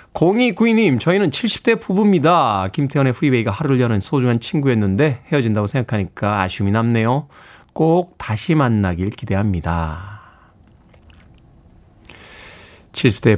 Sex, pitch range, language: male, 110-155 Hz, Korean